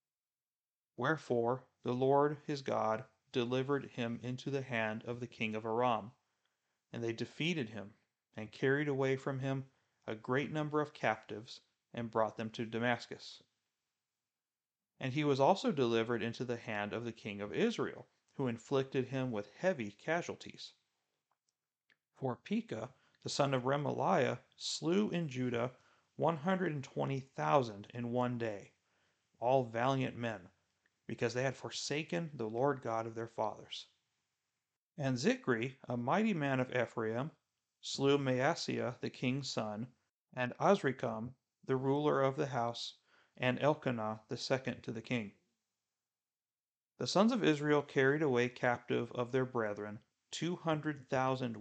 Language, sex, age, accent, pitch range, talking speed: English, male, 40-59, American, 115-140 Hz, 140 wpm